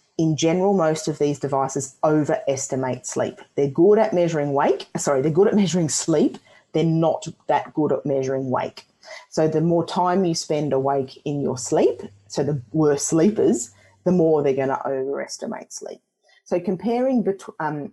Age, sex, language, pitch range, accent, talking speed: 30-49, female, English, 140-165 Hz, Australian, 165 wpm